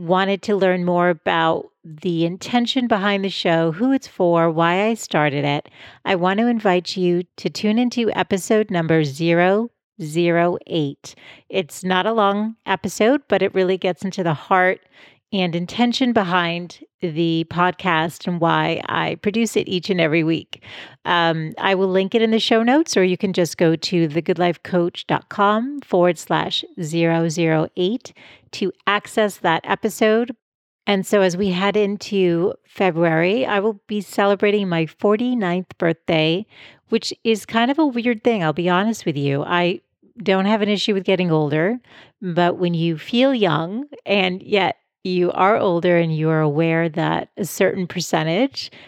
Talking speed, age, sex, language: 160 wpm, 40-59, female, English